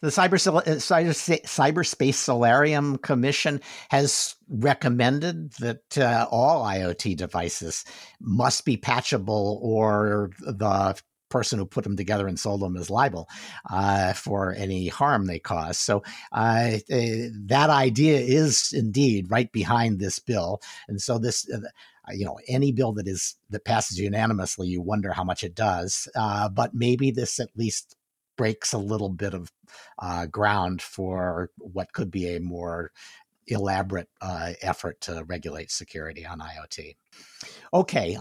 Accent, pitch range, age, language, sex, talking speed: American, 100-130 Hz, 50-69, English, male, 140 wpm